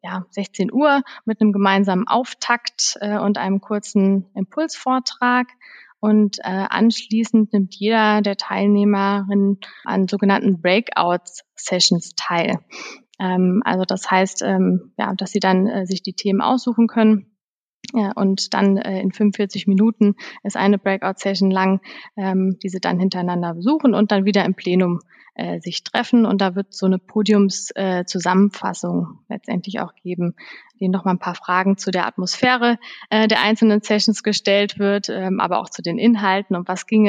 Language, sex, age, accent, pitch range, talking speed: German, female, 20-39, German, 190-225 Hz, 150 wpm